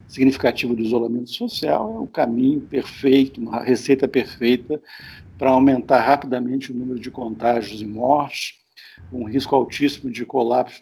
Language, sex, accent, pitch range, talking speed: Portuguese, male, Brazilian, 120-155 Hz, 145 wpm